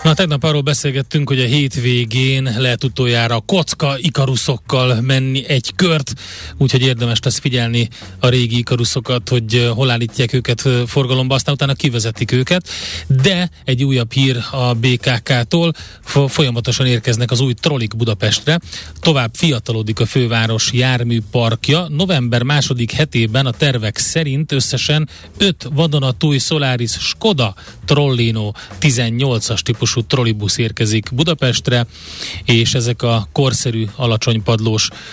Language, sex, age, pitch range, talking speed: Hungarian, male, 30-49, 115-135 Hz, 120 wpm